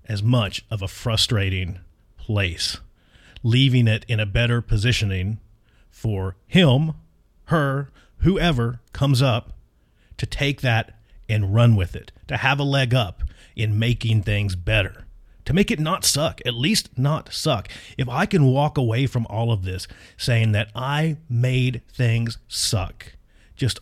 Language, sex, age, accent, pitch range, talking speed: English, male, 40-59, American, 100-135 Hz, 150 wpm